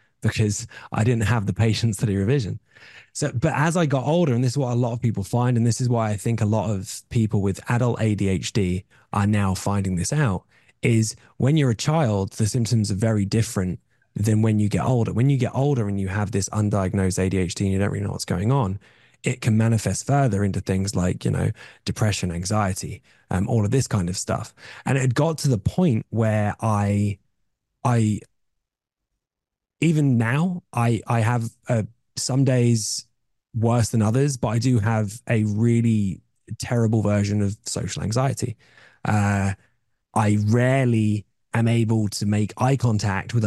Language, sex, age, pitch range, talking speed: English, male, 20-39, 105-125 Hz, 185 wpm